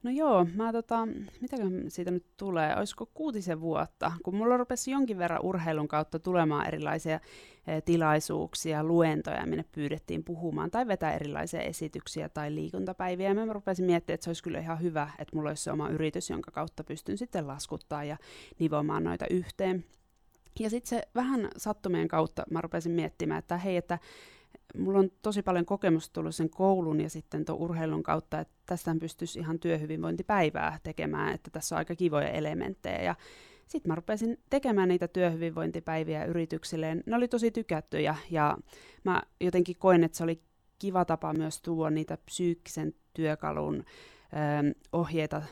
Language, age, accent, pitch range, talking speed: Finnish, 20-39, native, 155-185 Hz, 160 wpm